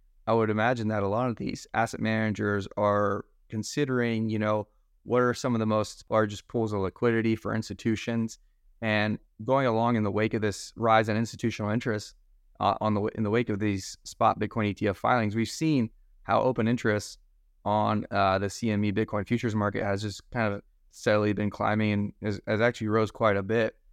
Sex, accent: male, American